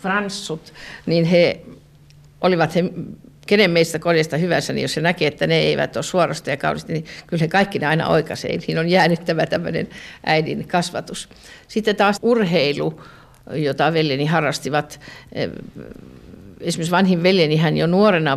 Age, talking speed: 50-69, 145 wpm